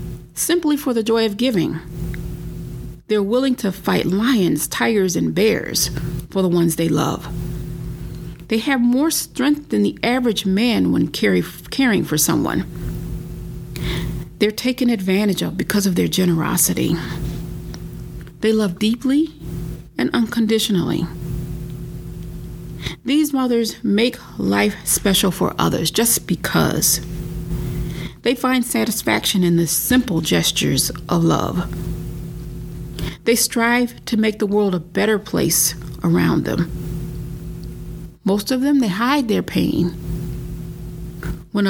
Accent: American